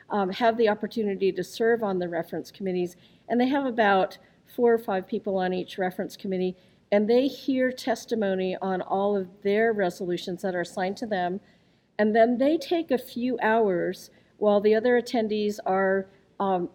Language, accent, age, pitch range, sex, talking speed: English, American, 50-69, 190-225 Hz, female, 175 wpm